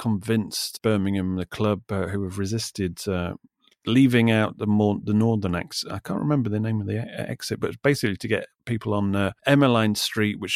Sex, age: male, 30-49